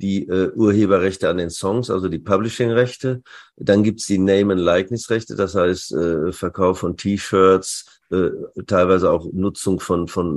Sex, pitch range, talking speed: male, 90-100 Hz, 170 wpm